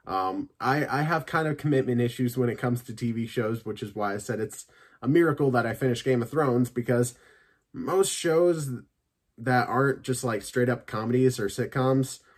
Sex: male